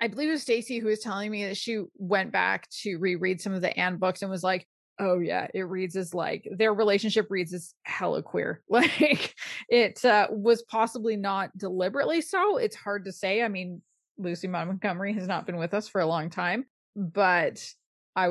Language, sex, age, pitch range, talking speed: English, female, 20-39, 185-240 Hz, 205 wpm